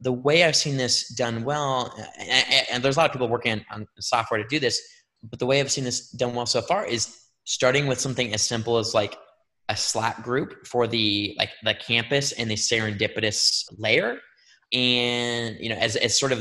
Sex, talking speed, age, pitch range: male, 210 wpm, 20-39, 105-130 Hz